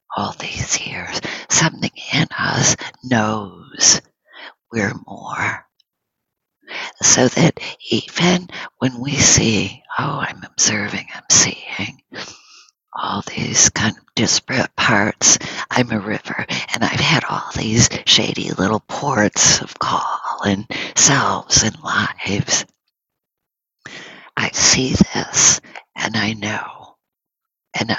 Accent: American